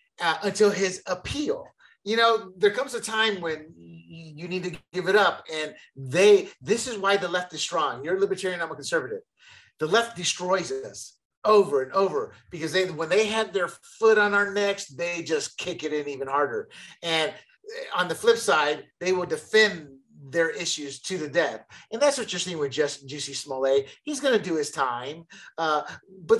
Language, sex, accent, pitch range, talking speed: English, male, American, 160-220 Hz, 200 wpm